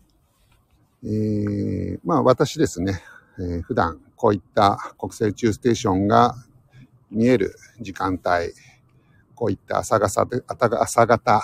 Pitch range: 95-140 Hz